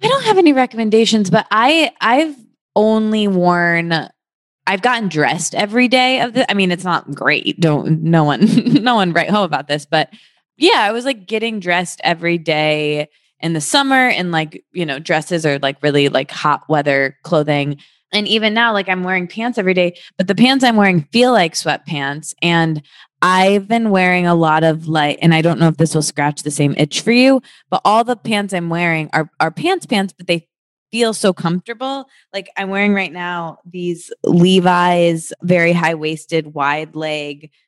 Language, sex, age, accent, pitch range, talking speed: English, female, 20-39, American, 160-210 Hz, 190 wpm